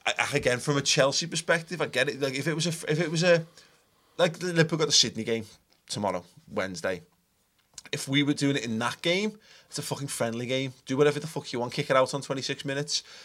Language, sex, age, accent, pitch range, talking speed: English, male, 20-39, British, 115-150 Hz, 235 wpm